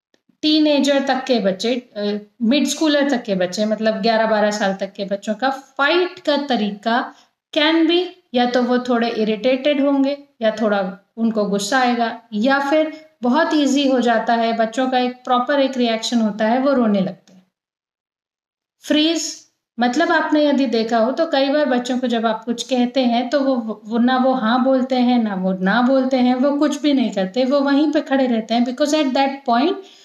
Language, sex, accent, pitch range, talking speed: Hindi, female, native, 230-300 Hz, 190 wpm